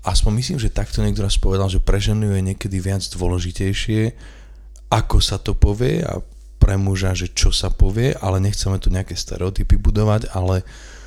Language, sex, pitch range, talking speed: Slovak, male, 95-105 Hz, 175 wpm